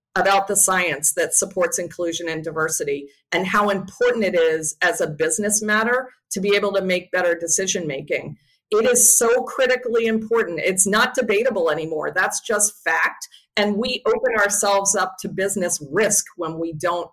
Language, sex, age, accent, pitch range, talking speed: English, female, 40-59, American, 165-210 Hz, 170 wpm